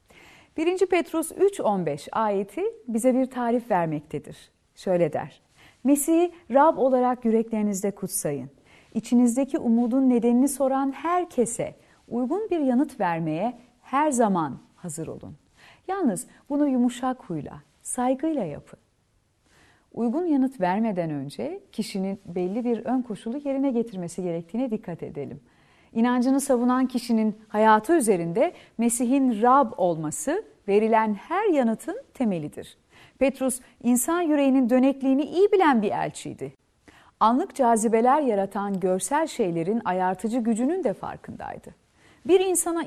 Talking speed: 110 wpm